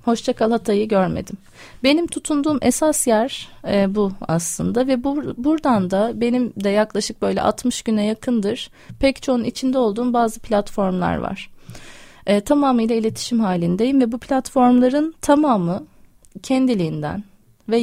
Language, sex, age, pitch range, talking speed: Turkish, female, 30-49, 200-250 Hz, 130 wpm